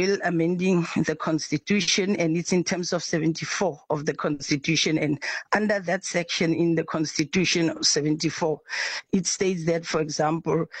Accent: South African